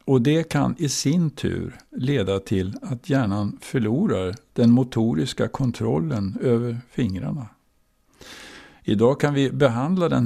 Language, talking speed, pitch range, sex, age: Swedish, 125 wpm, 100-125 Hz, male, 50-69